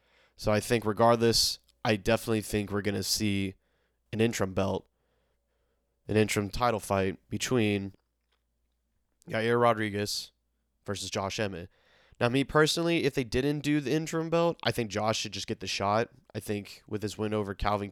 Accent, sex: American, male